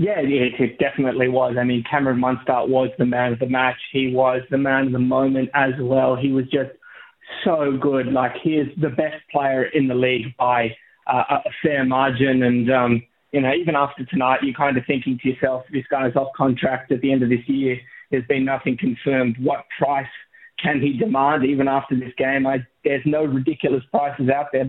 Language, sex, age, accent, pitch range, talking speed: English, male, 20-39, Australian, 125-140 Hz, 205 wpm